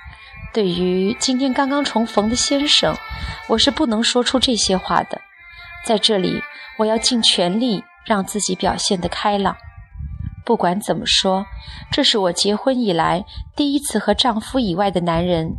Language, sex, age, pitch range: Chinese, female, 20-39, 185-255 Hz